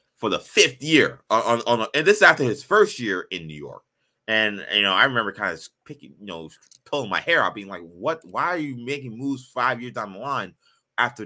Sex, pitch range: male, 80-115 Hz